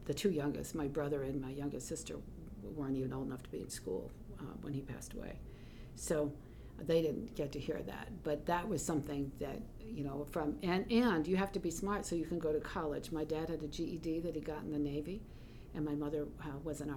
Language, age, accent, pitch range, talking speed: English, 50-69, American, 145-165 Hz, 225 wpm